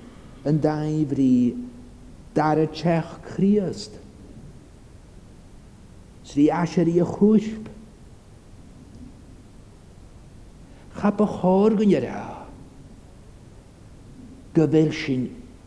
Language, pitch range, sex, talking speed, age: English, 120-170 Hz, male, 55 wpm, 60-79